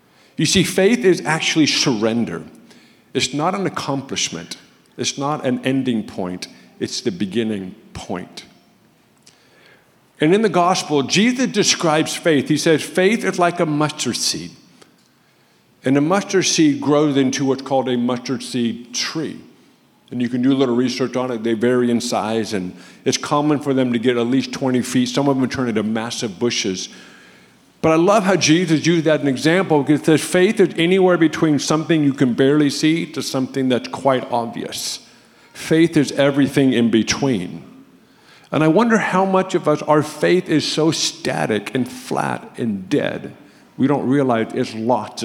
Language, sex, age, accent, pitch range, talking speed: English, male, 50-69, American, 120-160 Hz, 170 wpm